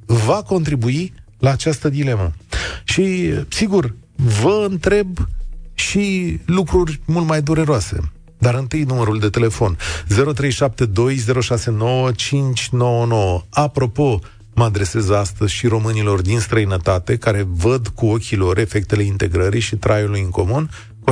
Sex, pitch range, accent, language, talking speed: male, 105-145 Hz, native, Romanian, 110 wpm